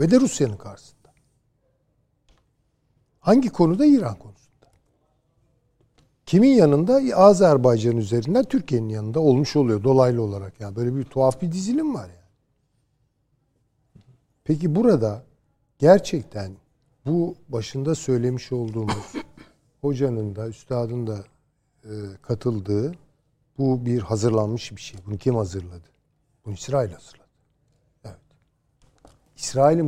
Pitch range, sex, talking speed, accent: 110-140 Hz, male, 100 wpm, native